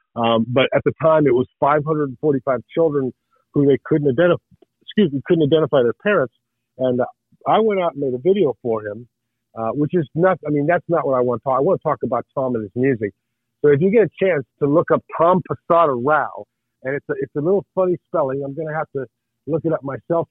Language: English